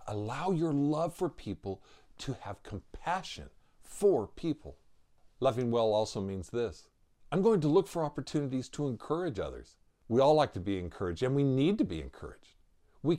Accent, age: American, 50-69